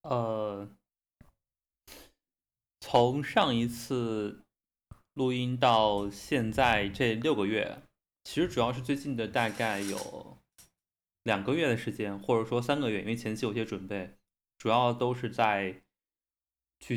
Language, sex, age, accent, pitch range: Chinese, male, 20-39, native, 95-120 Hz